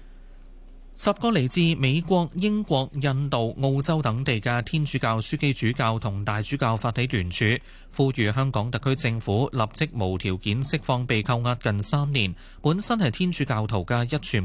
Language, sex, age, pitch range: Chinese, male, 20-39, 105-140 Hz